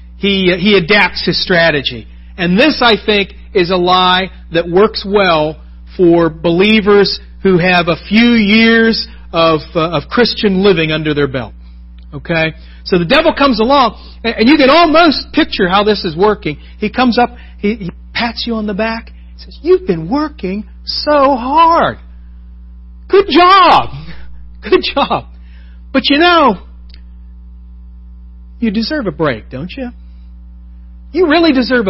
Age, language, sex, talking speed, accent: 40-59, English, male, 150 wpm, American